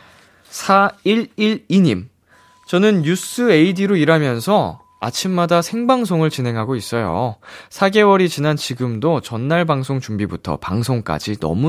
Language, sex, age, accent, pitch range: Korean, male, 20-39, native, 110-175 Hz